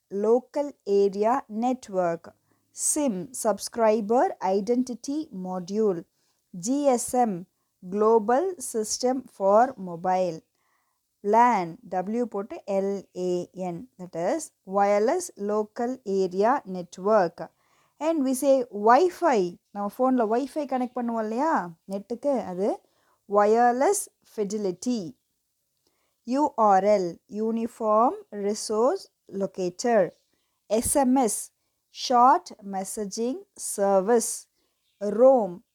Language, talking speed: Tamil, 75 wpm